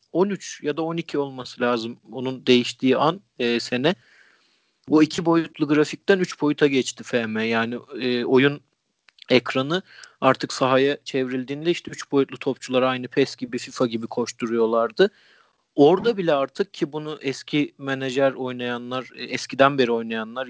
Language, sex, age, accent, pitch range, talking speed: Turkish, male, 40-59, native, 120-155 Hz, 140 wpm